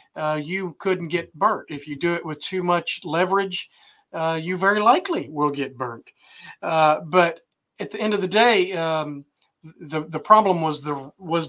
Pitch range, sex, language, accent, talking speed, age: 155-185 Hz, male, English, American, 185 wpm, 40-59